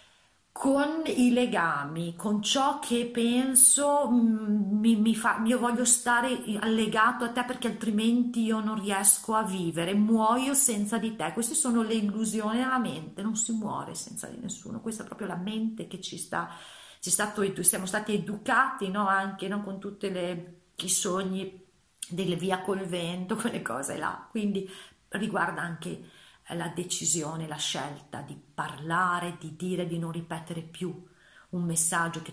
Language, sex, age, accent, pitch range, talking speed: Italian, female, 40-59, native, 165-220 Hz, 160 wpm